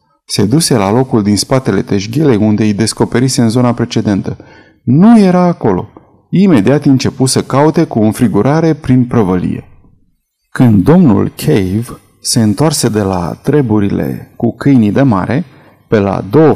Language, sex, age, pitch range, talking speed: Romanian, male, 30-49, 110-160 Hz, 145 wpm